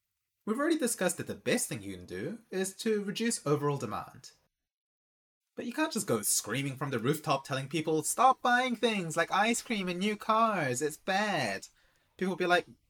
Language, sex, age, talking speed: English, male, 30-49, 190 wpm